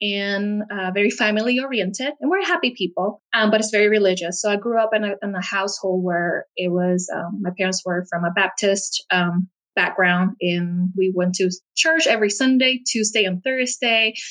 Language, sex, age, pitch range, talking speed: English, female, 20-39, 185-225 Hz, 185 wpm